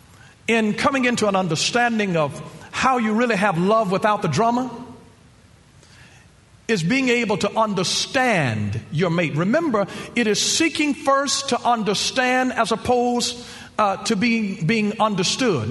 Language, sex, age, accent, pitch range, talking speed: English, male, 50-69, American, 180-250 Hz, 135 wpm